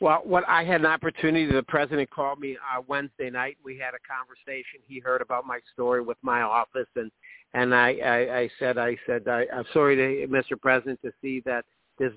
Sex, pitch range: male, 125-145 Hz